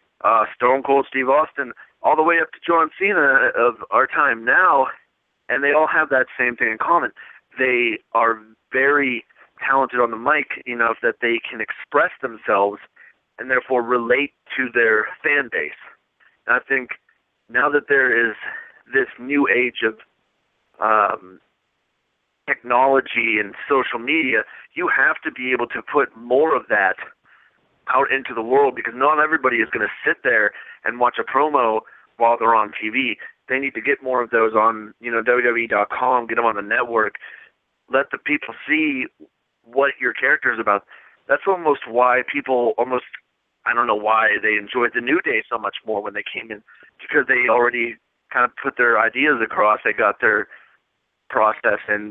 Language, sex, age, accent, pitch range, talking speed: English, male, 40-59, American, 115-155 Hz, 175 wpm